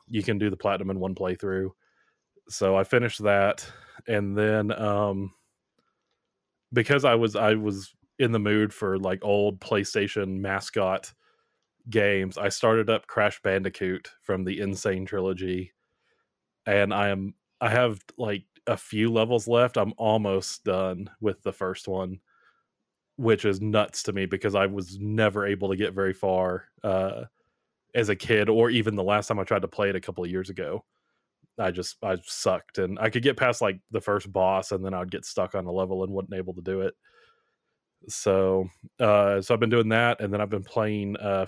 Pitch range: 95-110 Hz